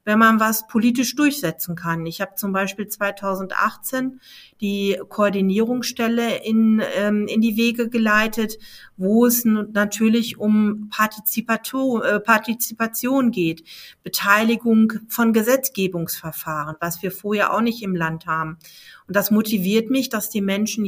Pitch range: 200-225 Hz